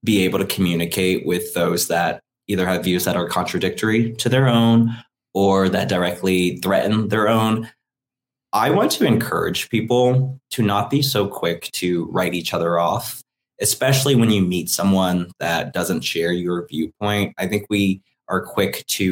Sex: male